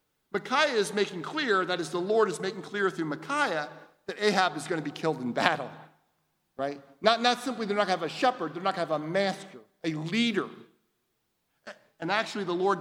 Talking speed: 215 wpm